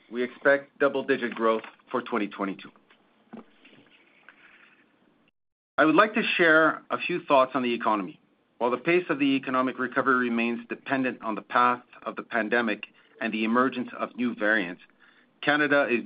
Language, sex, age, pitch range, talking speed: English, male, 40-59, 115-140 Hz, 150 wpm